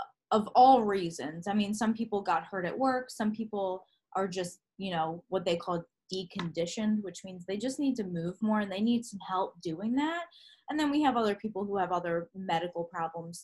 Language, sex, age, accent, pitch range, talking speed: English, female, 20-39, American, 180-240 Hz, 210 wpm